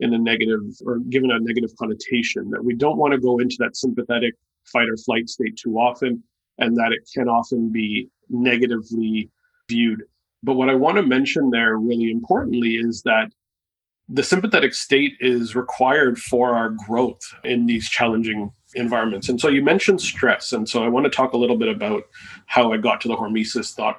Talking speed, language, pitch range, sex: 190 wpm, English, 115-135 Hz, male